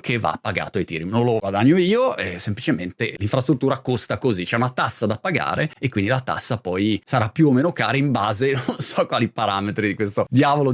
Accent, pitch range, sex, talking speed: native, 115-155 Hz, male, 220 wpm